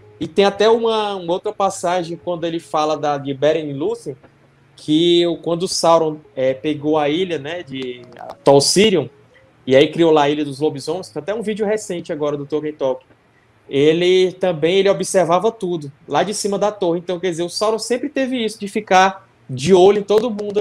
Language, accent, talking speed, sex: Portuguese, Brazilian, 205 wpm, male